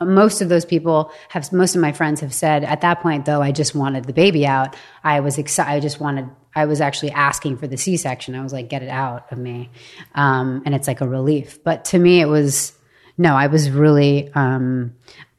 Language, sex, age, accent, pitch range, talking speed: English, female, 30-49, American, 140-170 Hz, 225 wpm